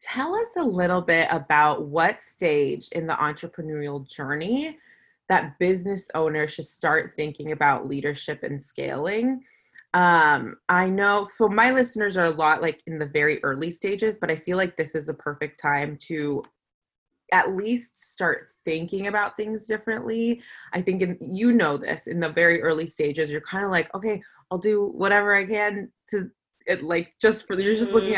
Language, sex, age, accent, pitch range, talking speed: English, female, 20-39, American, 150-200 Hz, 175 wpm